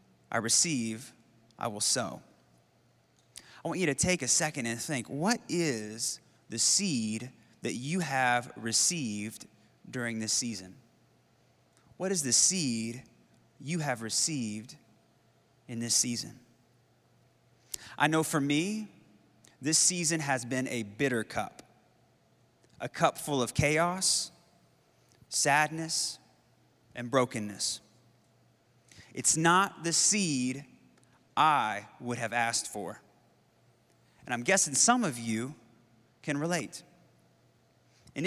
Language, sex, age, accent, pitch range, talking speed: English, male, 30-49, American, 115-155 Hz, 115 wpm